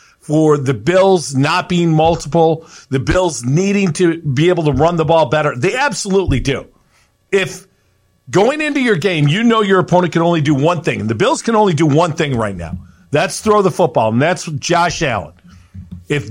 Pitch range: 140-200 Hz